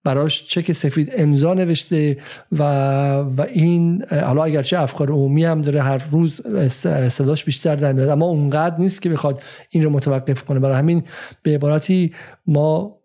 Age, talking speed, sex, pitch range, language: 50-69, 155 wpm, male, 135-165 Hz, Persian